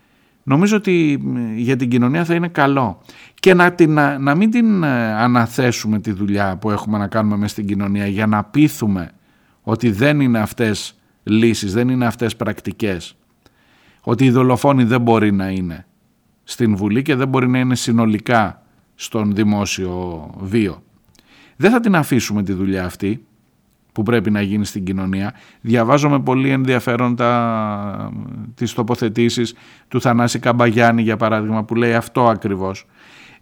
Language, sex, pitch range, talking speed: Greek, male, 105-135 Hz, 145 wpm